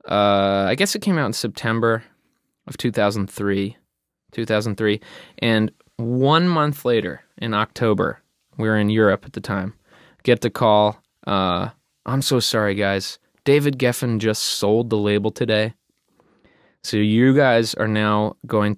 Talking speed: 145 wpm